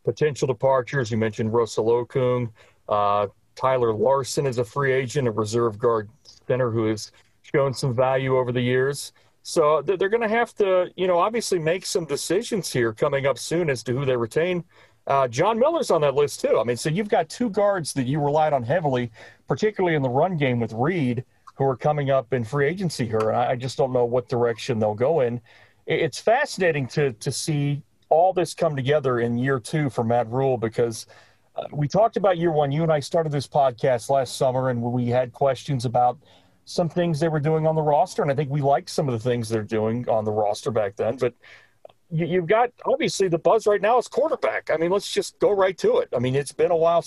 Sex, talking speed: male, 220 wpm